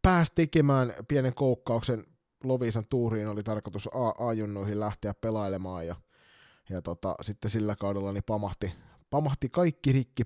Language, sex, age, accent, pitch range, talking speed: Finnish, male, 20-39, native, 95-120 Hz, 130 wpm